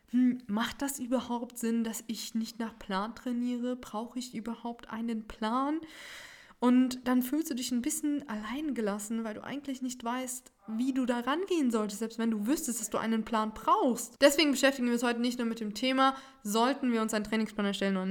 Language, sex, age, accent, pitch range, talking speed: German, female, 20-39, German, 205-245 Hz, 195 wpm